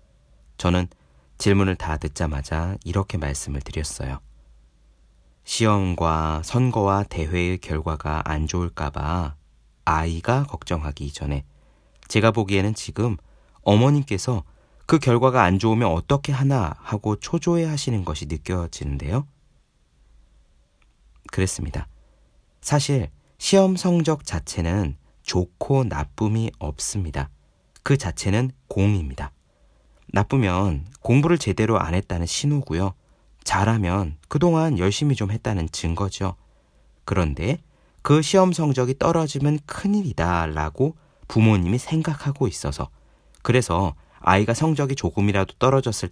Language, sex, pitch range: Korean, male, 80-120 Hz